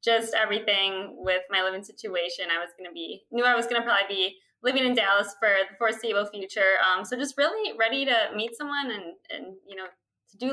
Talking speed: 220 wpm